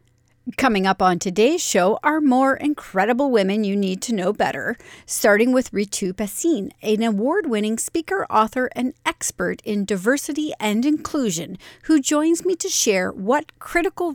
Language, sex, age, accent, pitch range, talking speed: English, female, 40-59, American, 195-265 Hz, 150 wpm